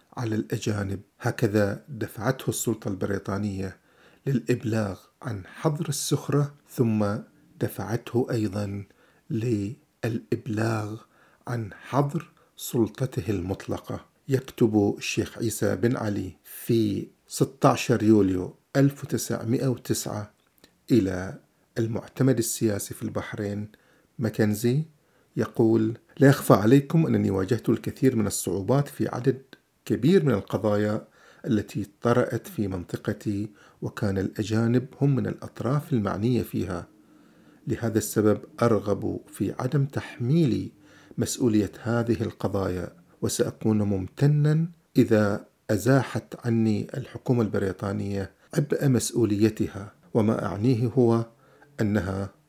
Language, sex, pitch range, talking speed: Arabic, male, 105-130 Hz, 90 wpm